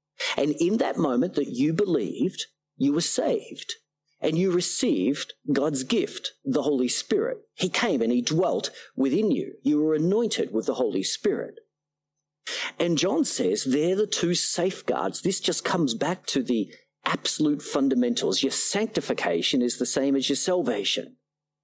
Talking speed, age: 155 wpm, 40-59